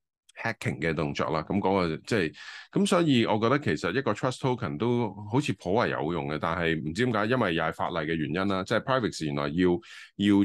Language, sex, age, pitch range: Chinese, male, 20-39, 80-110 Hz